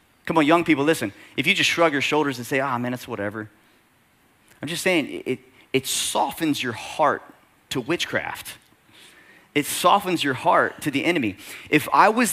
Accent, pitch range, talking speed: American, 125-160 Hz, 185 wpm